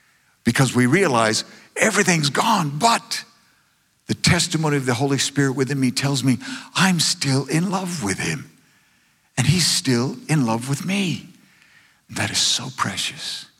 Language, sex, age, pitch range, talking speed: English, male, 50-69, 120-150 Hz, 145 wpm